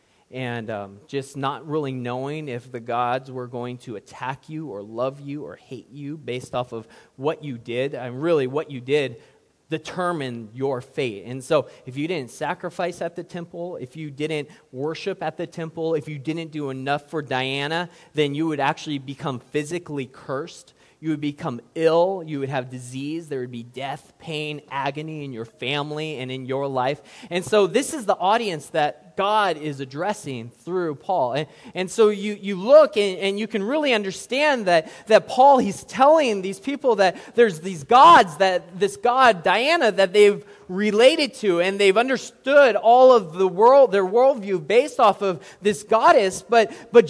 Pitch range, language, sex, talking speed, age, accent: 140-205 Hz, English, male, 185 wpm, 20-39, American